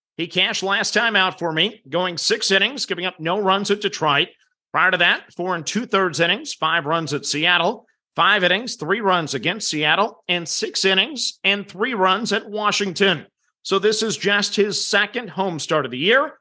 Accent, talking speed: American, 190 wpm